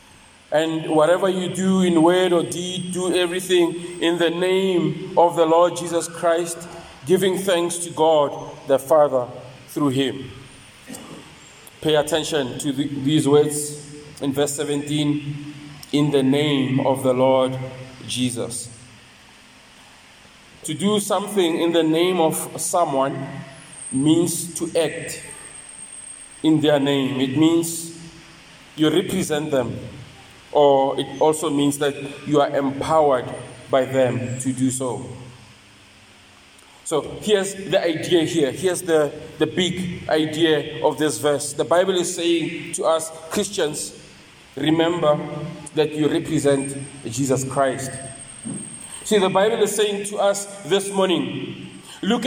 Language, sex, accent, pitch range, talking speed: English, male, South African, 135-175 Hz, 125 wpm